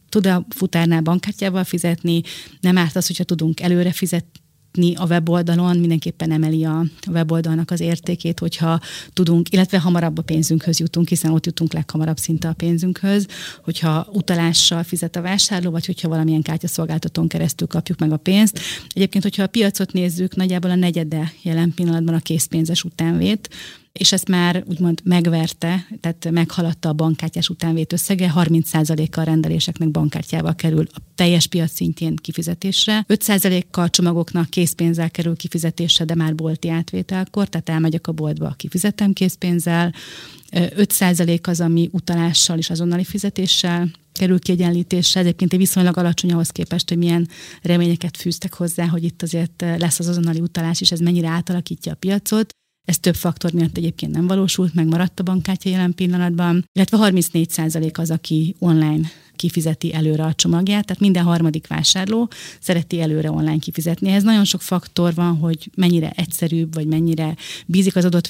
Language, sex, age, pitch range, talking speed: Hungarian, female, 30-49, 165-180 Hz, 155 wpm